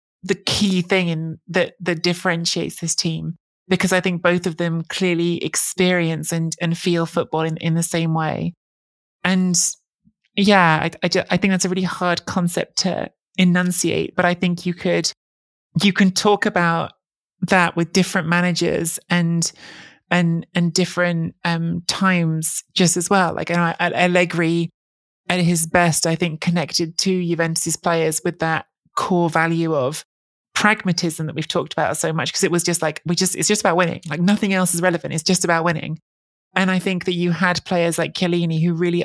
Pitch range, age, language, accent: 160-180 Hz, 20-39, English, British